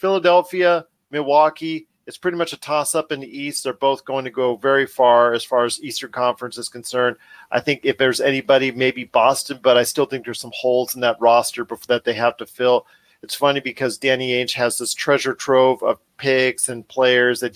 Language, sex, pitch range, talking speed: English, male, 120-140 Hz, 210 wpm